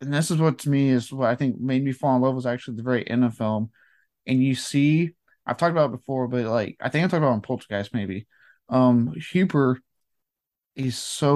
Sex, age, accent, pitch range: male, 20-39, American, 120-135 Hz